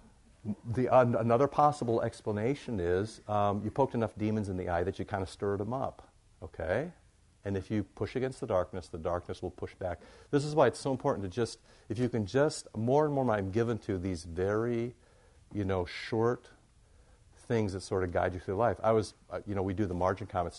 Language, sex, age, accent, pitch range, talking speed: English, male, 50-69, American, 90-110 Hz, 215 wpm